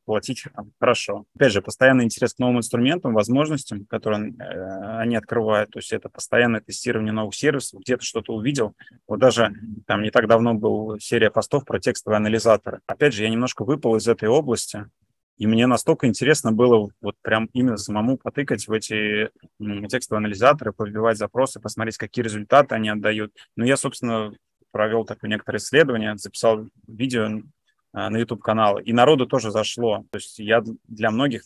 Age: 20-39